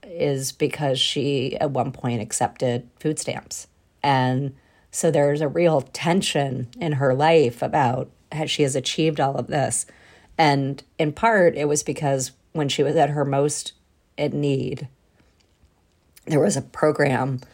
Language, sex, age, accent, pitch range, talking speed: English, female, 40-59, American, 130-150 Hz, 150 wpm